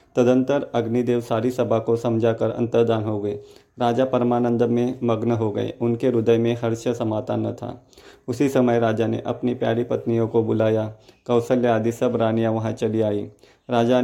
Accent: native